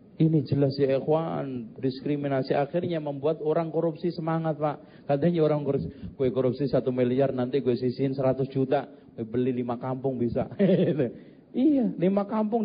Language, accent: Indonesian, native